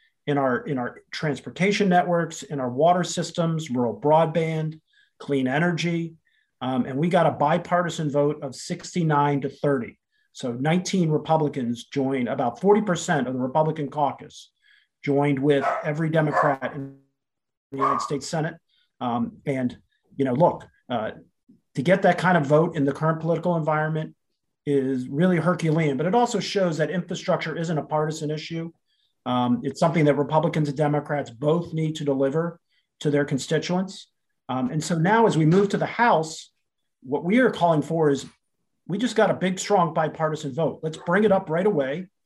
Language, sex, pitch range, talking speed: English, male, 140-175 Hz, 170 wpm